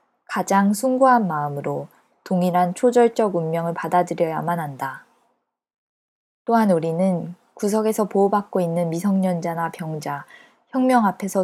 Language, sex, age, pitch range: Korean, female, 20-39, 170-200 Hz